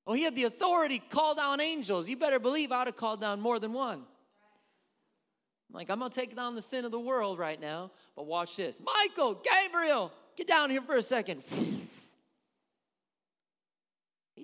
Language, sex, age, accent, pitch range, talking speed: English, male, 30-49, American, 220-285 Hz, 190 wpm